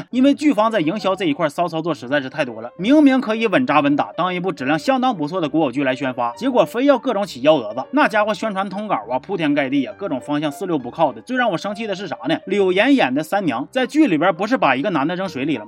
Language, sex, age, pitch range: Chinese, male, 30-49, 165-265 Hz